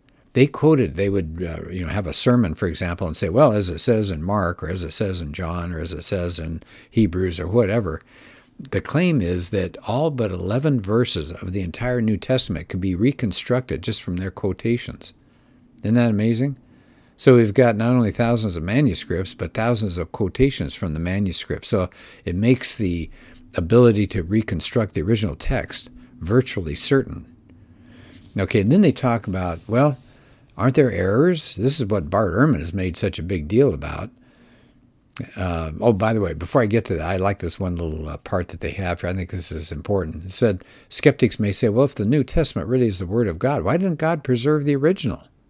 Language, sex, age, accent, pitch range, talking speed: English, male, 60-79, American, 90-125 Hz, 205 wpm